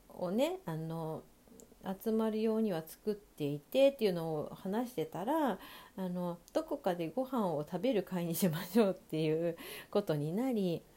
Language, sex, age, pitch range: Japanese, female, 40-59, 170-255 Hz